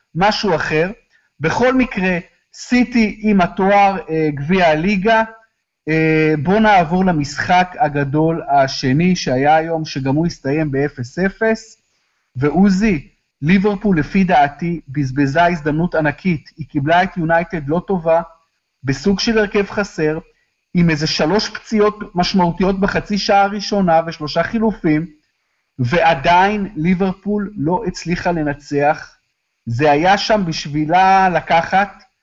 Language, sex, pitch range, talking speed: Hebrew, male, 155-200 Hz, 110 wpm